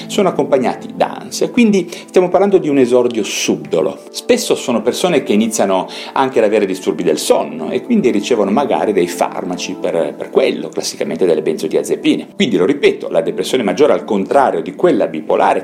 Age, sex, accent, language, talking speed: 40-59, male, native, Italian, 175 wpm